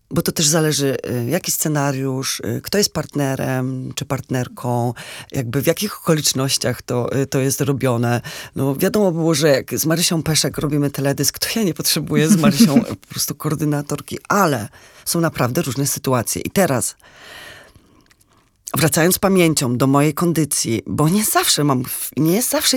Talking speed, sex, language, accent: 155 wpm, female, Polish, native